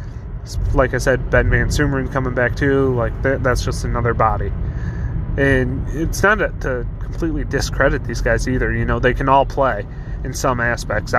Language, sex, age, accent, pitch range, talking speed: English, male, 20-39, American, 115-135 Hz, 180 wpm